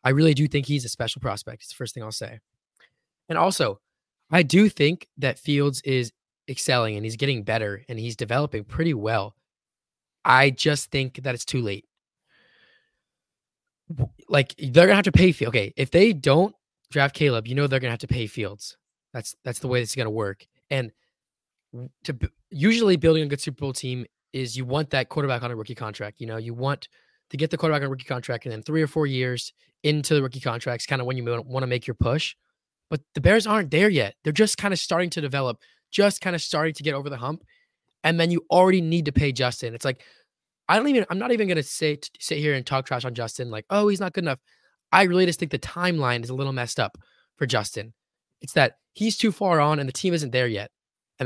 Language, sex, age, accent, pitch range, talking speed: English, male, 20-39, American, 125-165 Hz, 230 wpm